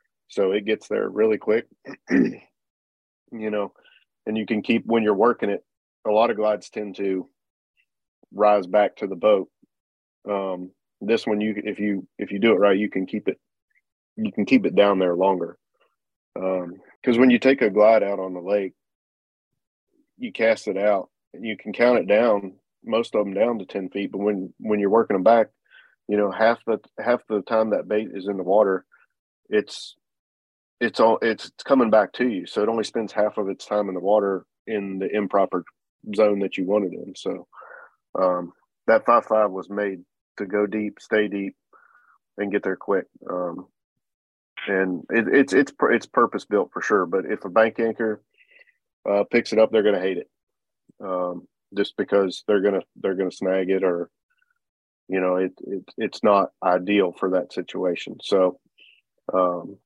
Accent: American